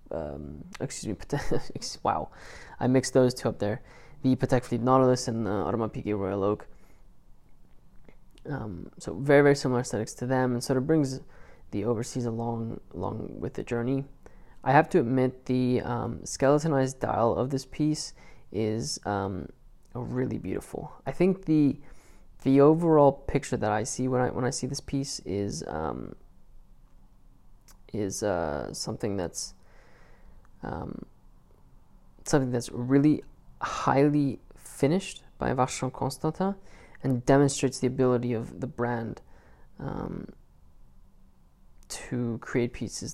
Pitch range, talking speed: 100-130 Hz, 135 wpm